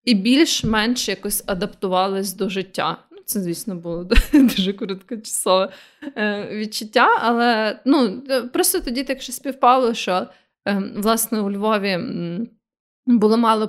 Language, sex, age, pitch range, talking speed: Ukrainian, female, 20-39, 200-250 Hz, 110 wpm